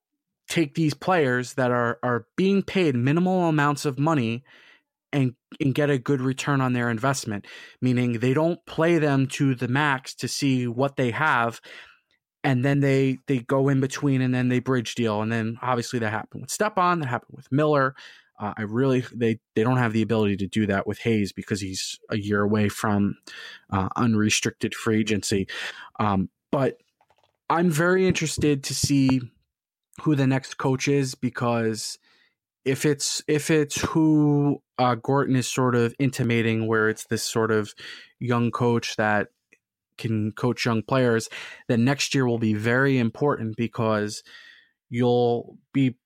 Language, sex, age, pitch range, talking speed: English, male, 20-39, 110-140 Hz, 165 wpm